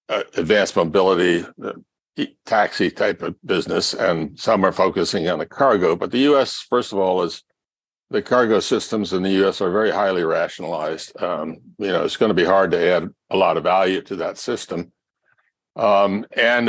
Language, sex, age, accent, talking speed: English, male, 60-79, American, 190 wpm